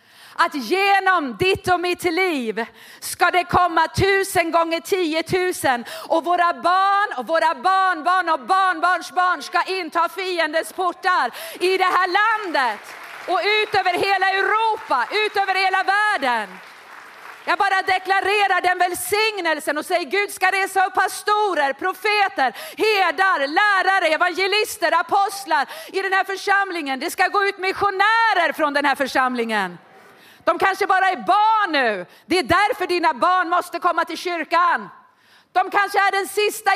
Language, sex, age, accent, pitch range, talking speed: Swedish, female, 40-59, native, 320-390 Hz, 145 wpm